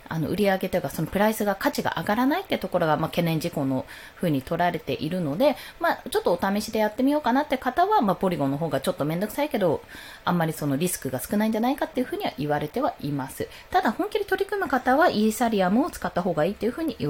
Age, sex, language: 20-39, female, Japanese